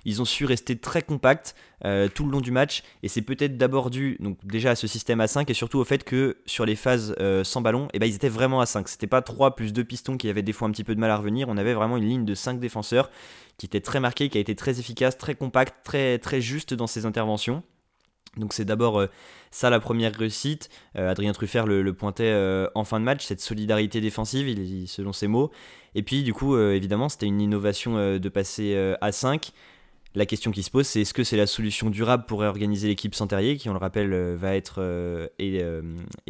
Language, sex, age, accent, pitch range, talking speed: French, male, 20-39, French, 100-125 Hz, 250 wpm